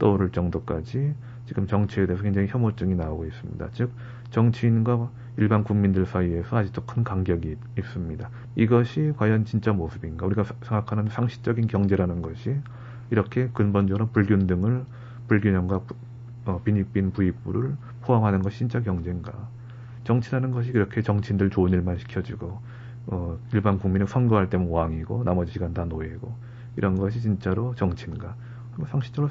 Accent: native